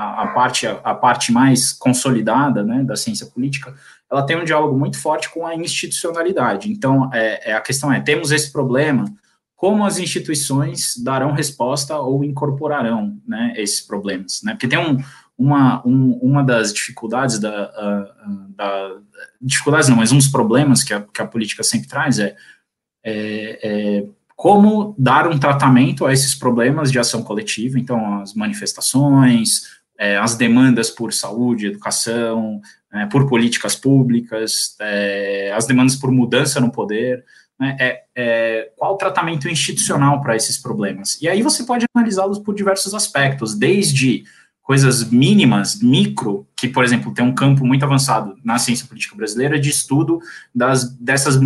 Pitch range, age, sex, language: 115-145 Hz, 20-39, male, Portuguese